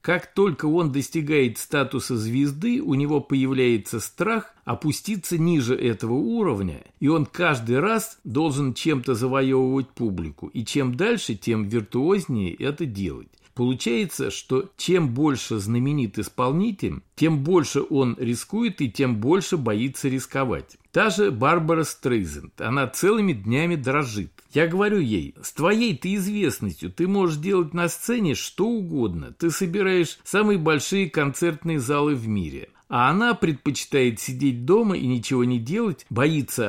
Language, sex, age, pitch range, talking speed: Russian, male, 50-69, 120-170 Hz, 135 wpm